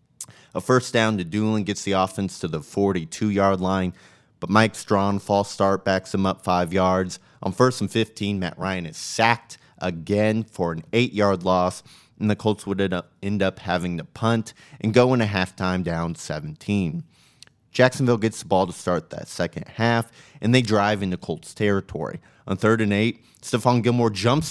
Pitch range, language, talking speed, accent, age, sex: 95-115 Hz, English, 175 wpm, American, 30-49, male